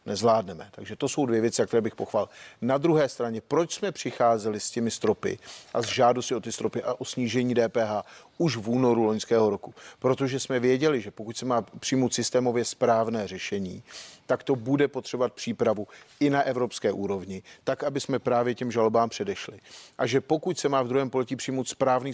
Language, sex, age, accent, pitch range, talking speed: Czech, male, 40-59, native, 115-140 Hz, 185 wpm